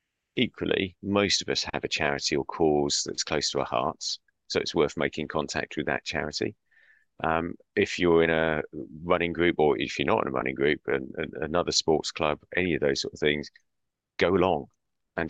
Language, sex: English, male